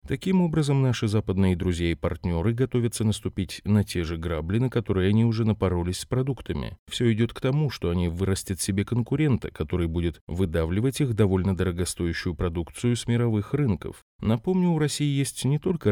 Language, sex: Russian, male